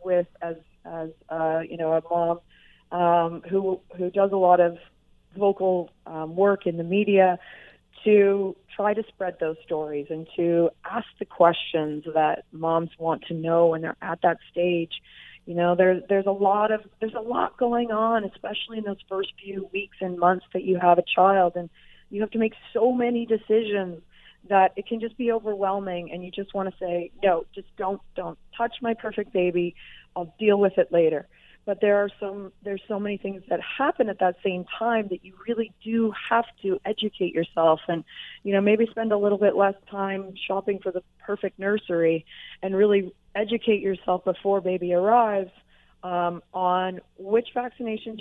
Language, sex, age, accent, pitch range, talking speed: English, female, 30-49, American, 175-205 Hz, 185 wpm